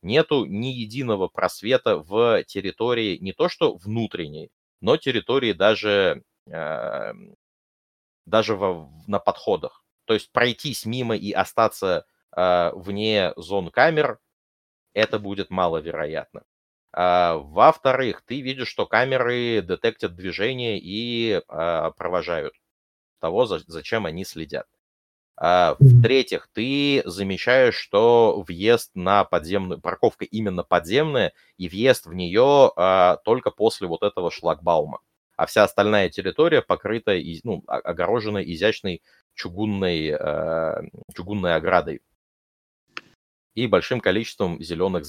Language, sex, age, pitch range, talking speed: Russian, male, 30-49, 85-115 Hz, 100 wpm